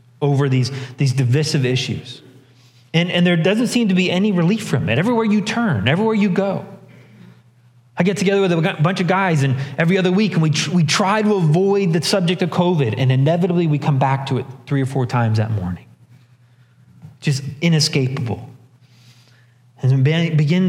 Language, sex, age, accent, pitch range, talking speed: English, male, 30-49, American, 125-170 Hz, 185 wpm